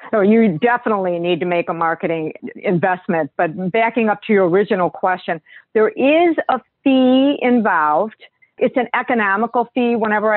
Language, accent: English, American